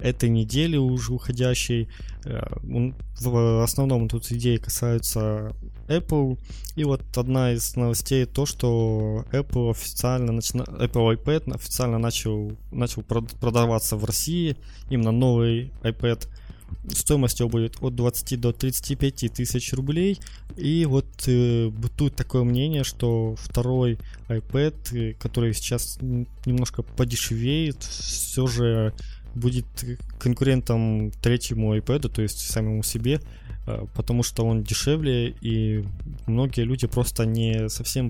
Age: 20-39